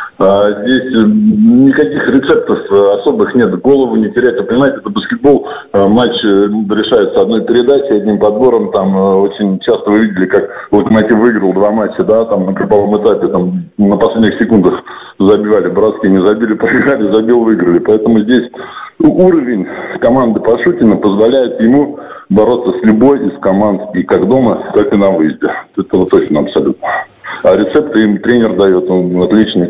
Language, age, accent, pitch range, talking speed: Russian, 20-39, native, 95-120 Hz, 160 wpm